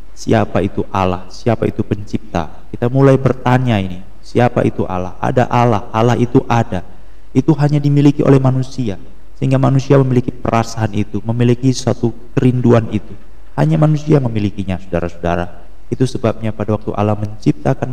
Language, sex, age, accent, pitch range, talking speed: Indonesian, male, 30-49, native, 100-120 Hz, 140 wpm